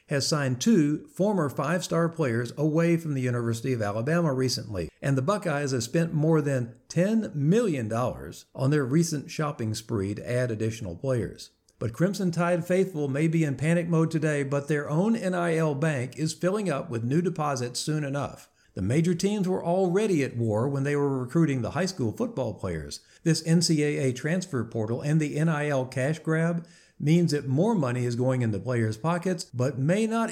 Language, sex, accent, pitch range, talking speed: English, male, American, 125-170 Hz, 180 wpm